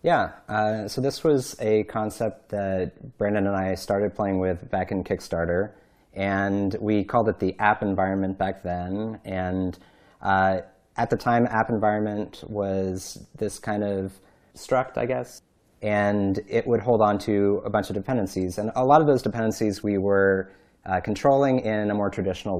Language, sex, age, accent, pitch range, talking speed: English, male, 30-49, American, 95-105 Hz, 170 wpm